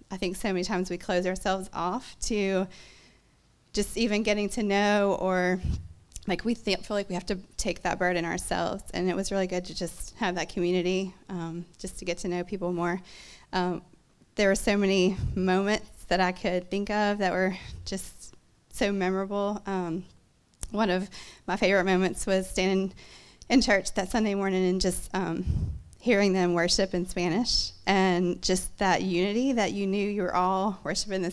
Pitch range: 185-205 Hz